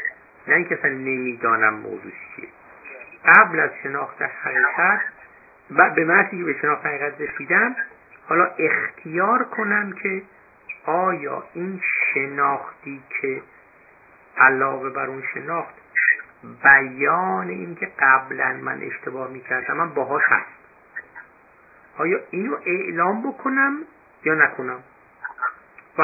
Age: 60-79